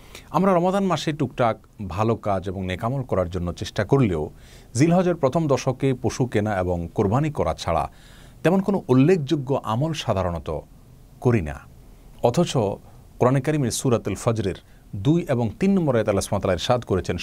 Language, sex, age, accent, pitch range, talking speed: Bengali, male, 40-59, native, 95-135 Hz, 135 wpm